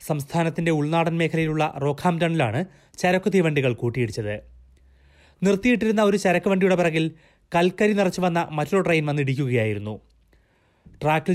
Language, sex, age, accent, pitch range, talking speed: Malayalam, male, 30-49, native, 135-180 Hz, 95 wpm